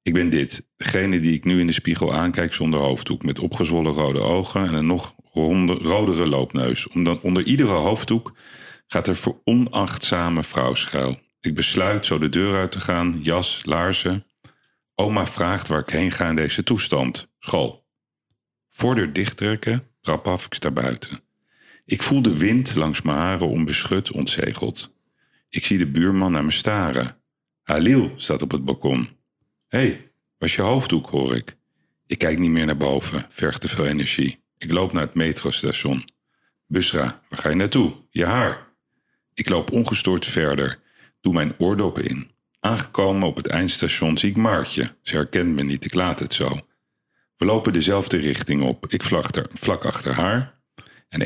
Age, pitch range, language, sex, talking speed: 50-69, 75-100 Hz, Dutch, male, 165 wpm